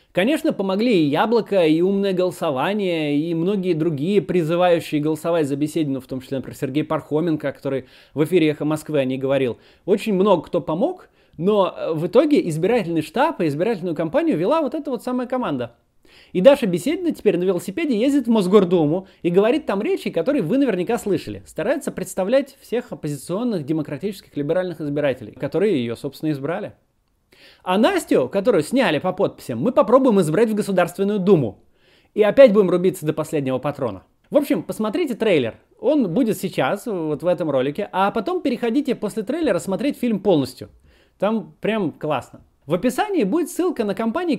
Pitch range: 150-235 Hz